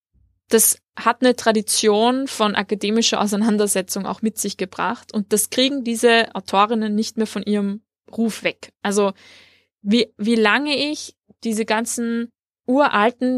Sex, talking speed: female, 135 wpm